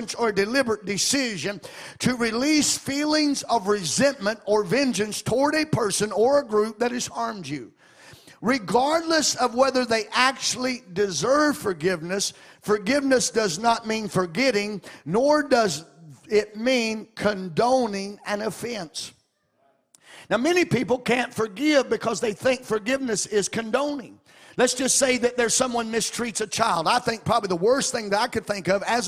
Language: English